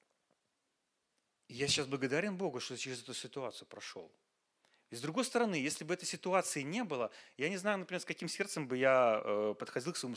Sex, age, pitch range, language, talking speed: male, 30-49, 125-170 Hz, Russian, 185 wpm